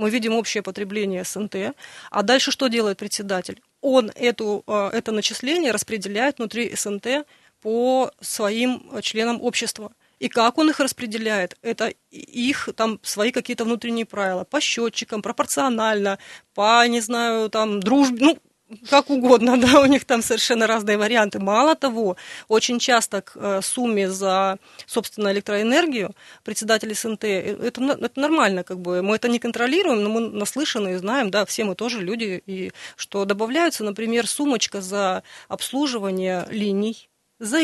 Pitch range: 205-245 Hz